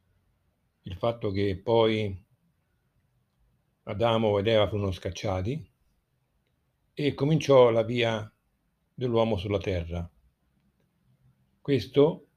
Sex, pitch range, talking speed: male, 95-135 Hz, 80 wpm